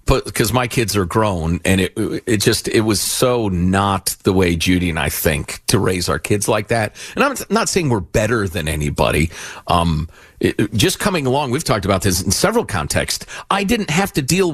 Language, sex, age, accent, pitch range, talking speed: English, male, 50-69, American, 90-125 Hz, 210 wpm